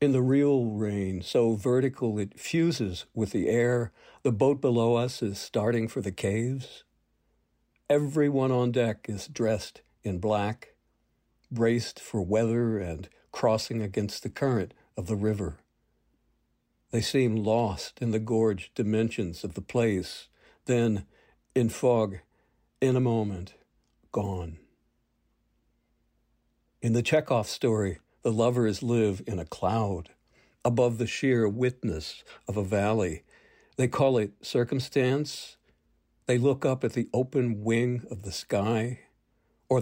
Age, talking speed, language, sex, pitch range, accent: 60-79, 130 wpm, English, male, 105-125 Hz, American